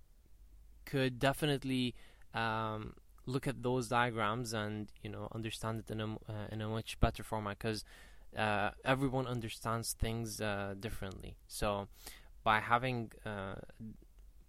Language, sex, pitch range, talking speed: English, male, 105-125 Hz, 130 wpm